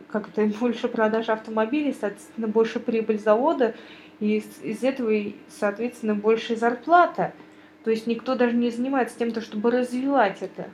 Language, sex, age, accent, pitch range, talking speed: Russian, female, 20-39, native, 210-245 Hz, 140 wpm